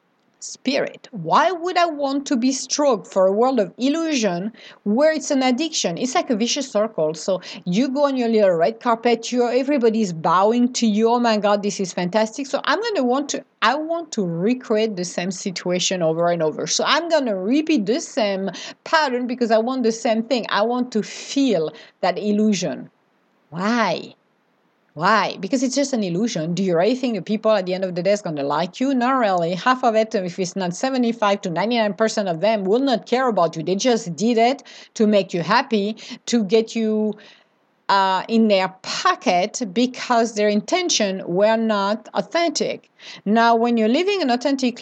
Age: 40-59